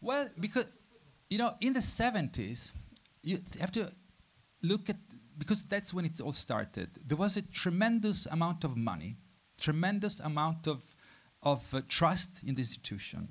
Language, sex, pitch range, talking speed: English, male, 125-175 Hz, 160 wpm